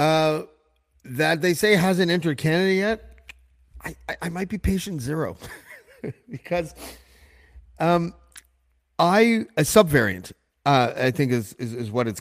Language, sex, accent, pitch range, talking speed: English, male, American, 105-160 Hz, 140 wpm